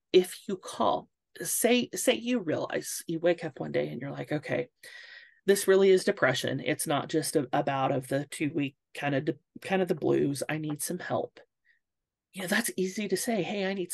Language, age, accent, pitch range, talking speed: English, 30-49, American, 150-200 Hz, 215 wpm